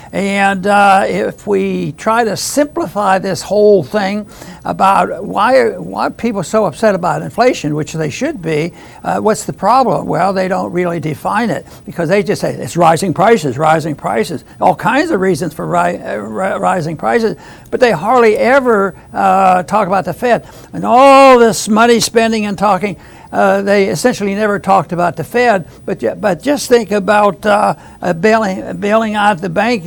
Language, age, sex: English, 60-79, male